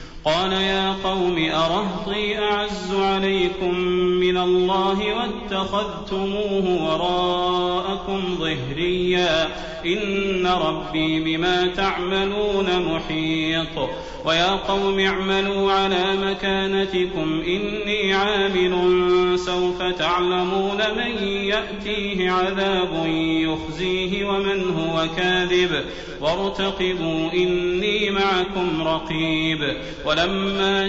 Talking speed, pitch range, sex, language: 70 wpm, 170-195 Hz, male, Arabic